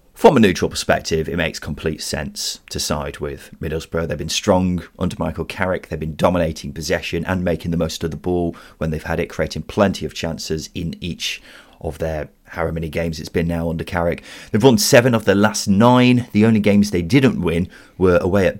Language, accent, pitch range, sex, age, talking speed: English, British, 80-100 Hz, male, 30-49, 210 wpm